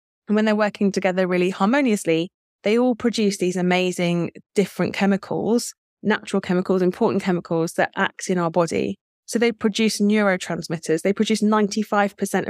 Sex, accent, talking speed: female, British, 145 wpm